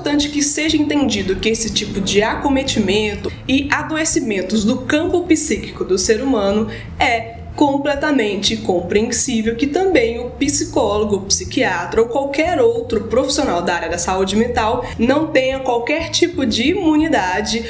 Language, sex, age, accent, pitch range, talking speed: Portuguese, female, 20-39, Brazilian, 210-275 Hz, 130 wpm